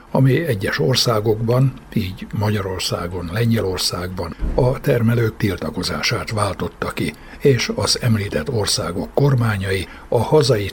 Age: 60-79